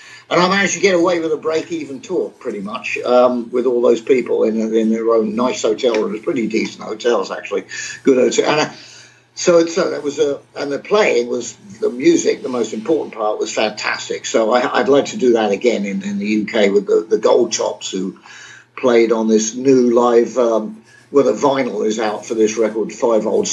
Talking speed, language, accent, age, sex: 205 wpm, English, British, 50-69, male